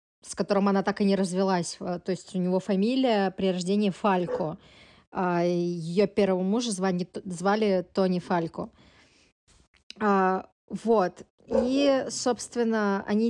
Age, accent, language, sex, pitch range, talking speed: 20-39, native, Russian, female, 180-215 Hz, 115 wpm